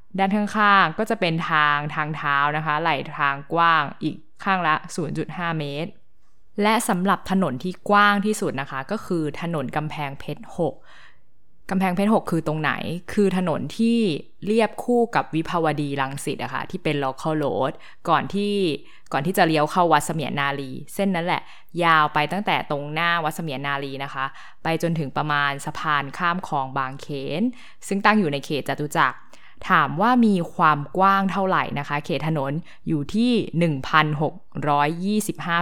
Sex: female